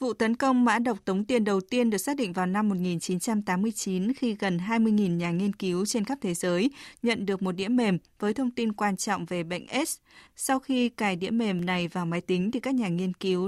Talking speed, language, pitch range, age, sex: 230 wpm, Vietnamese, 185-225 Hz, 20-39, female